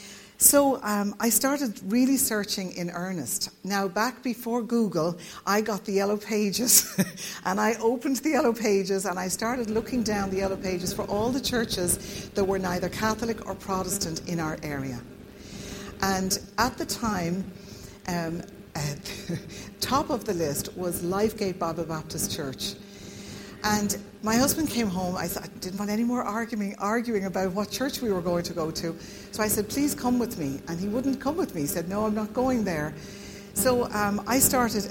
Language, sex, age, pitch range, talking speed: English, female, 60-79, 175-225 Hz, 180 wpm